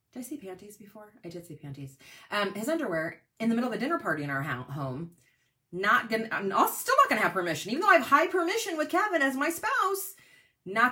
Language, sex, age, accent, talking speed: English, female, 30-49, American, 235 wpm